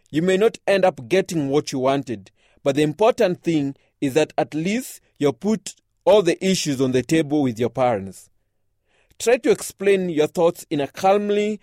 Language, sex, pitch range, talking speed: English, male, 135-190 Hz, 185 wpm